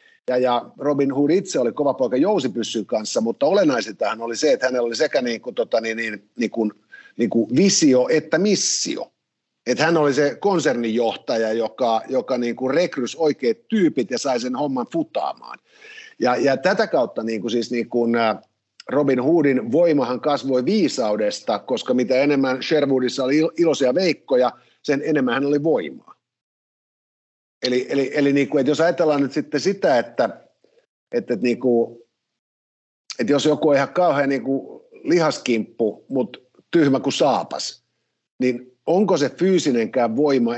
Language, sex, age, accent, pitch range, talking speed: Finnish, male, 50-69, native, 120-165 Hz, 145 wpm